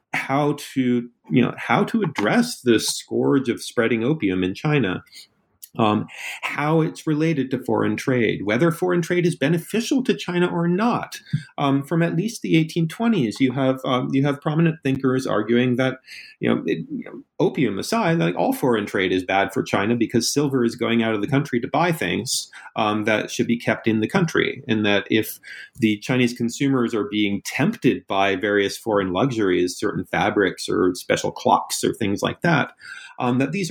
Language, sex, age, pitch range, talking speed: English, male, 40-59, 105-155 Hz, 185 wpm